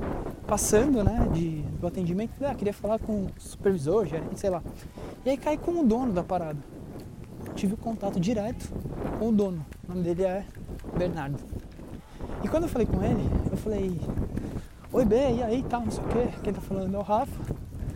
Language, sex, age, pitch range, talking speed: Portuguese, male, 20-39, 165-215 Hz, 200 wpm